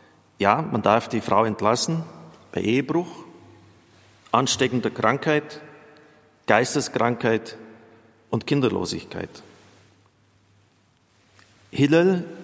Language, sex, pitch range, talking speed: German, male, 105-130 Hz, 70 wpm